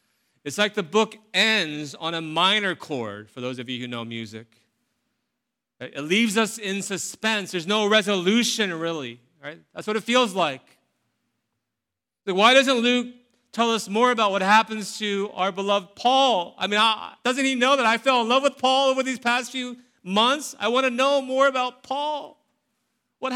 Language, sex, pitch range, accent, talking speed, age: English, male, 145-240 Hz, American, 180 wpm, 40-59